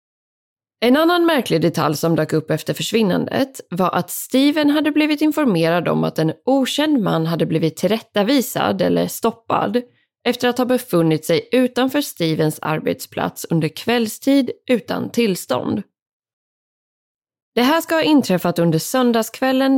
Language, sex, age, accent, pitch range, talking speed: Swedish, female, 20-39, native, 170-255 Hz, 135 wpm